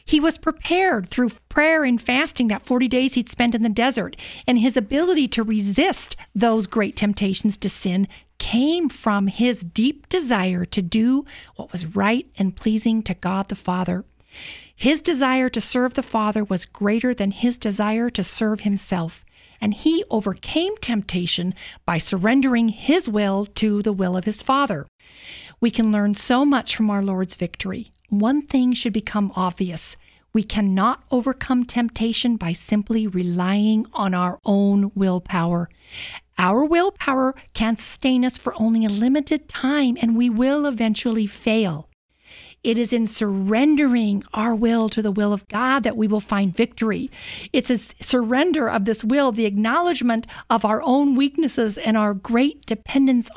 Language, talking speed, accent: English, 160 wpm, American